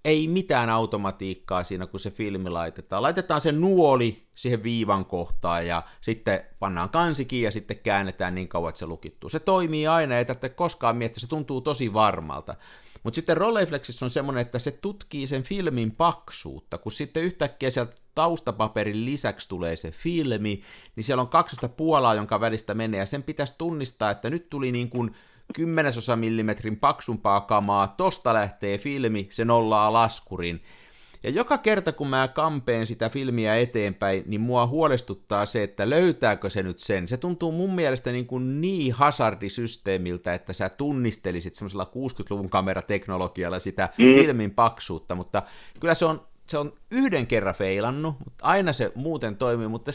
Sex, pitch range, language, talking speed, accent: male, 100-145 Hz, Finnish, 155 wpm, native